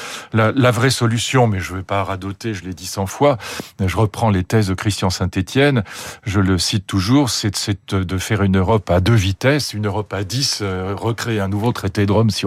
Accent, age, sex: French, 40-59, male